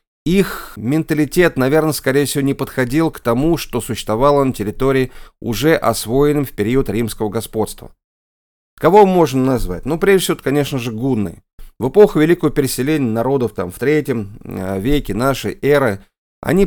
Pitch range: 115-155 Hz